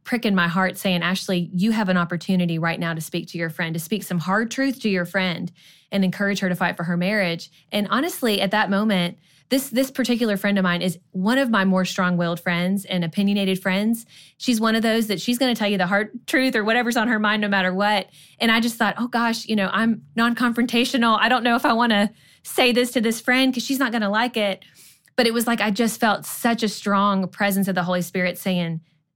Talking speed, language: 245 wpm, English